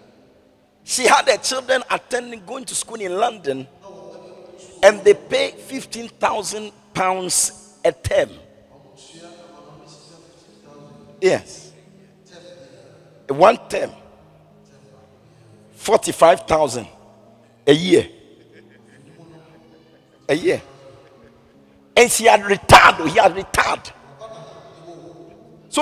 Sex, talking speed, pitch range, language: male, 75 wpm, 135-220 Hz, English